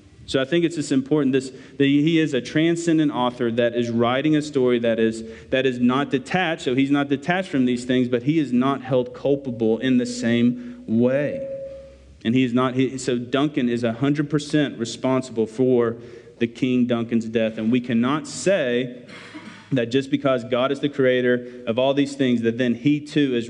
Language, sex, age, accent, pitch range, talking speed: English, male, 40-59, American, 115-135 Hz, 190 wpm